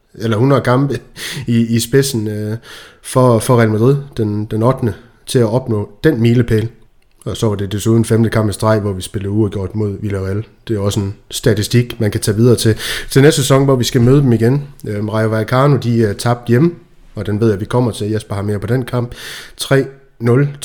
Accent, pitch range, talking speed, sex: native, 110-130 Hz, 215 wpm, male